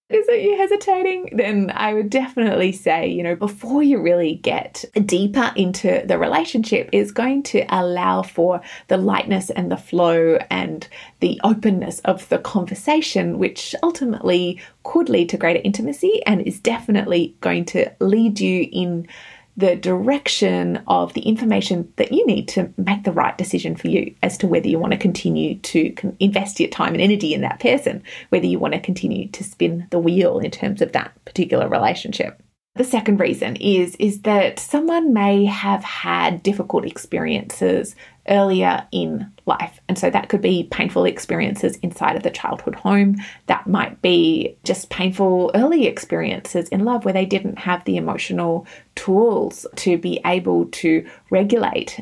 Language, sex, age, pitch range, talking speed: English, female, 30-49, 180-230 Hz, 165 wpm